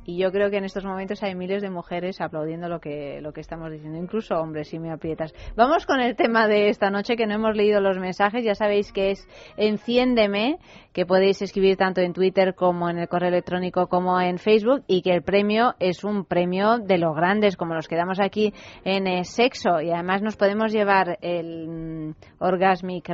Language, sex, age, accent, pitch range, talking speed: Spanish, female, 30-49, Spanish, 175-210 Hz, 205 wpm